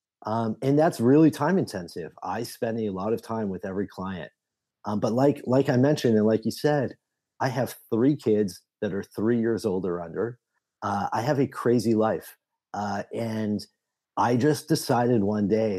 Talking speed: 185 wpm